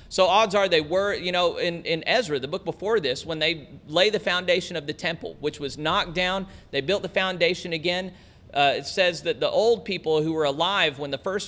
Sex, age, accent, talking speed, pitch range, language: male, 40-59, American, 230 wpm, 125-175 Hz, English